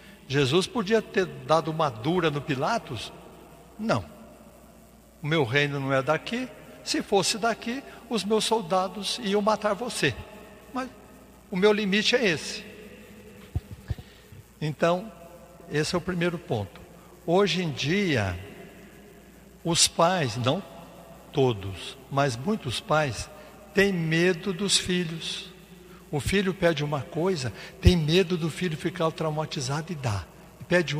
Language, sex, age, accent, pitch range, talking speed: Portuguese, male, 60-79, Brazilian, 145-205 Hz, 125 wpm